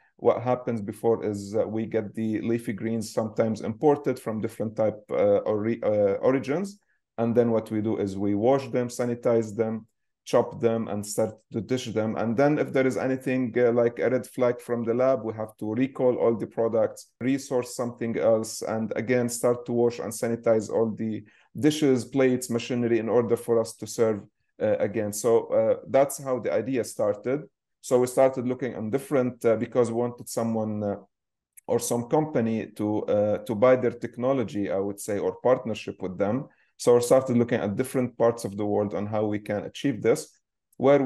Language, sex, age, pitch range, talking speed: English, male, 30-49, 110-130 Hz, 195 wpm